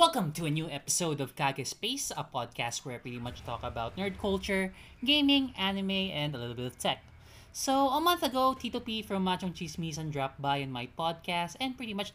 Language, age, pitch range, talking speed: Filipino, 20-39, 130-195 Hz, 210 wpm